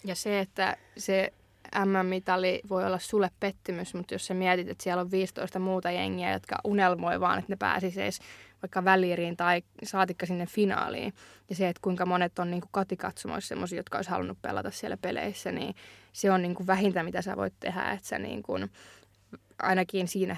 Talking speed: 185 wpm